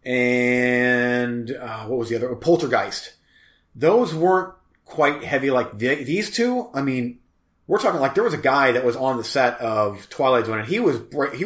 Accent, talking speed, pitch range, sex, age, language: American, 190 wpm, 115-140 Hz, male, 30-49, English